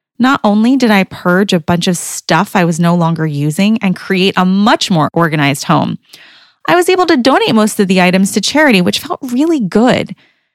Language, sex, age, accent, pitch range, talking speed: English, female, 30-49, American, 180-250 Hz, 205 wpm